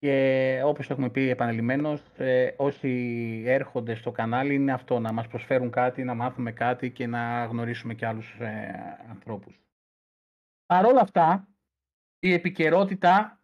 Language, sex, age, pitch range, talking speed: Greek, male, 30-49, 120-150 Hz, 140 wpm